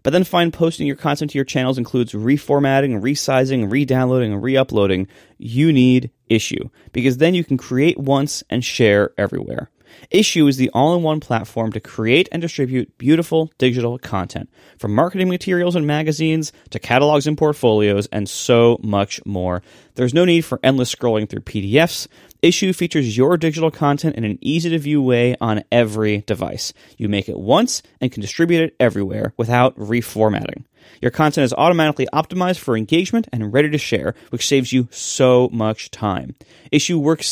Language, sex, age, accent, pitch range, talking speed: English, male, 30-49, American, 115-155 Hz, 160 wpm